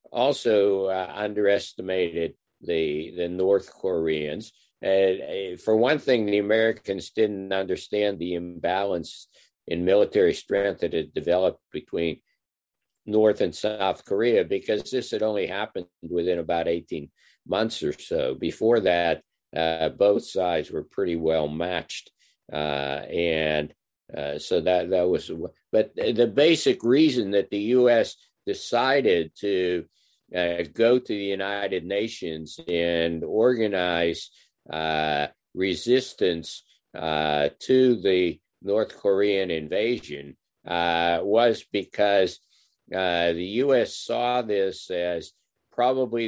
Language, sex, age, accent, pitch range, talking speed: English, male, 50-69, American, 85-110 Hz, 115 wpm